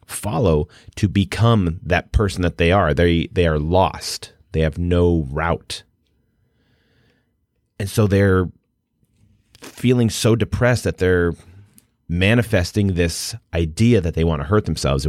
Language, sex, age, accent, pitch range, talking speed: English, male, 30-49, American, 80-110 Hz, 130 wpm